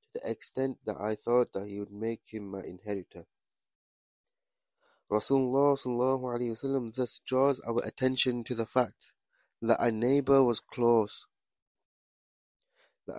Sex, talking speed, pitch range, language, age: male, 115 wpm, 105-130 Hz, English, 20-39